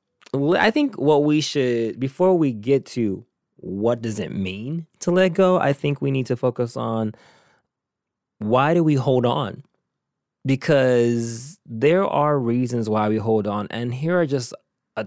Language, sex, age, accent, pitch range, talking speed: English, male, 20-39, American, 105-140 Hz, 165 wpm